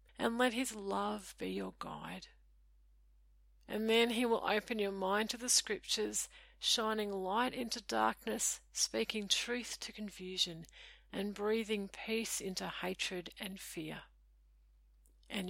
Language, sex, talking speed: English, female, 130 wpm